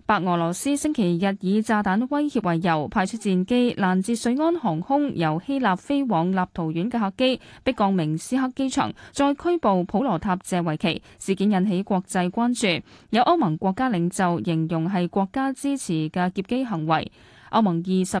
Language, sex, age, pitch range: Chinese, female, 10-29, 180-250 Hz